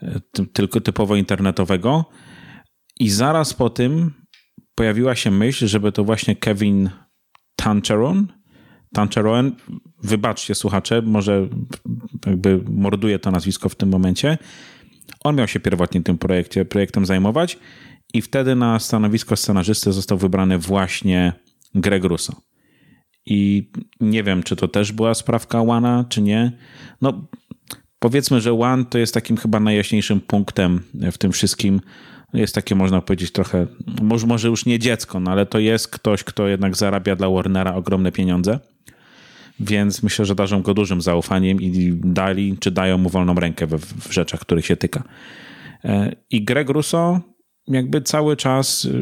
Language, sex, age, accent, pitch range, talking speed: Polish, male, 30-49, native, 95-115 Hz, 140 wpm